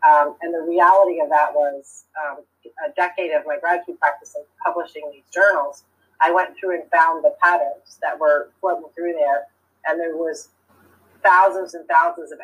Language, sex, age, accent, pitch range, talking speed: English, female, 30-49, American, 155-195 Hz, 180 wpm